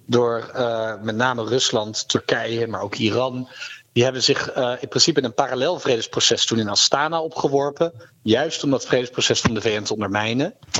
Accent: Dutch